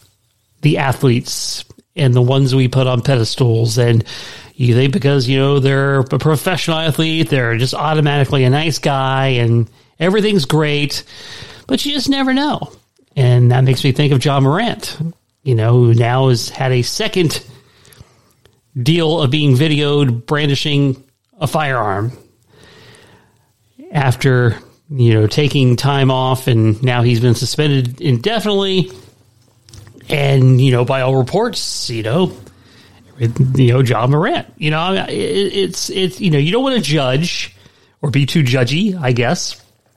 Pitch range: 125-155 Hz